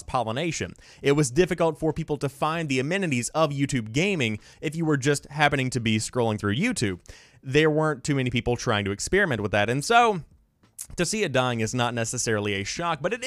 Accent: American